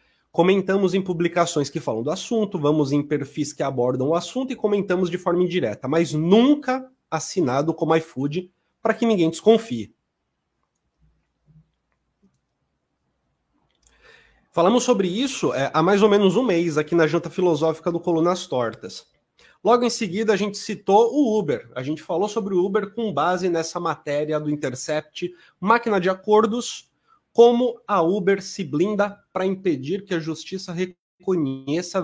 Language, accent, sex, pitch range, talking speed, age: Portuguese, Brazilian, male, 160-210 Hz, 145 wpm, 30-49